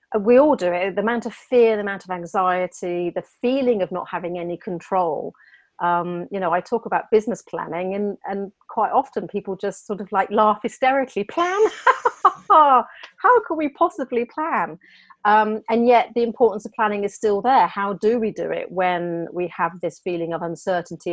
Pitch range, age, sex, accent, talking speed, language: 170-215 Hz, 40-59, female, British, 185 wpm, English